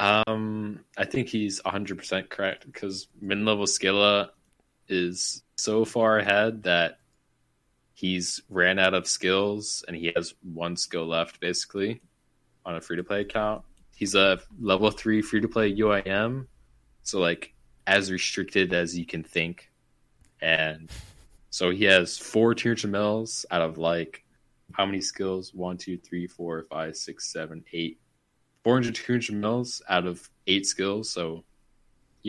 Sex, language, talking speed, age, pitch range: male, English, 150 wpm, 20-39, 85-105 Hz